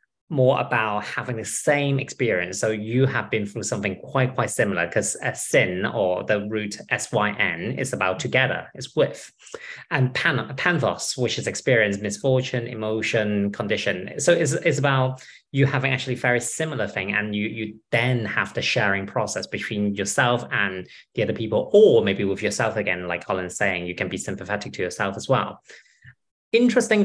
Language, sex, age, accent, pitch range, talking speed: English, male, 20-39, British, 105-140 Hz, 170 wpm